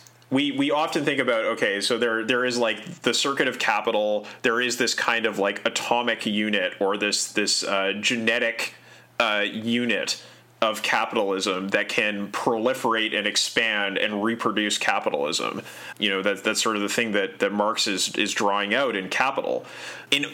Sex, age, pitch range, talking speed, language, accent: male, 30-49, 105-135 Hz, 170 wpm, English, American